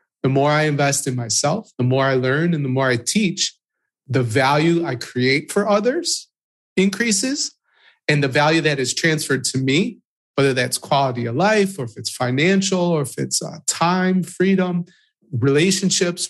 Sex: male